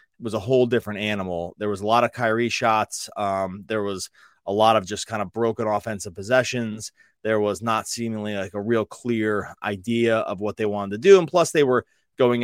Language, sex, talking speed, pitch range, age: English, male, 210 wpm, 110-135 Hz, 20-39